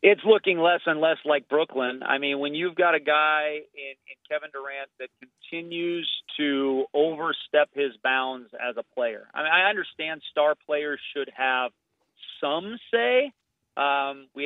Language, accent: English, American